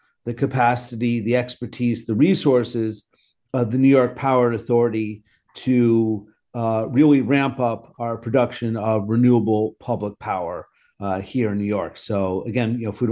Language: English